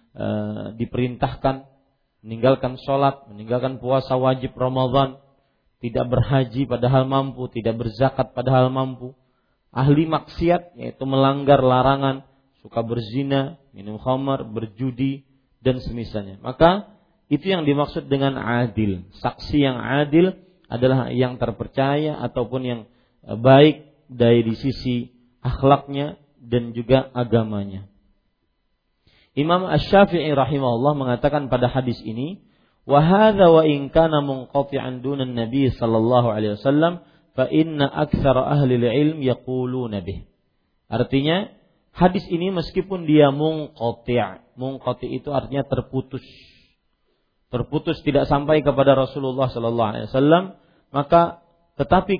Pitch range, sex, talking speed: 120-145 Hz, male, 105 wpm